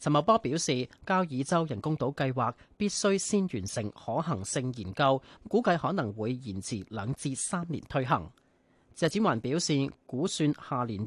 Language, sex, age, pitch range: Chinese, male, 30-49, 120-165 Hz